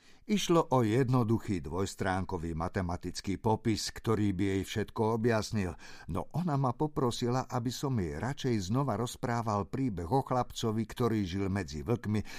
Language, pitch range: Slovak, 95-130 Hz